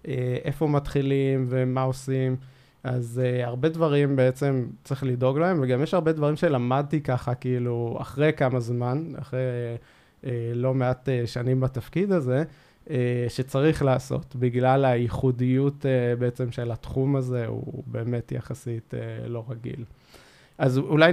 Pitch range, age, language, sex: 125-145 Hz, 20-39, Hebrew, male